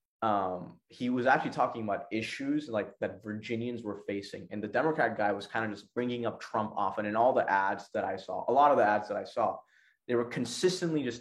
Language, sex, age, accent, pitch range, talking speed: English, male, 20-39, American, 105-125 Hz, 230 wpm